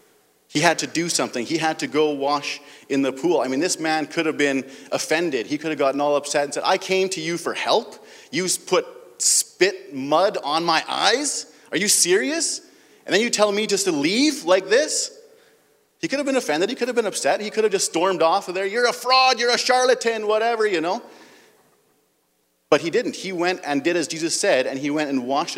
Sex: male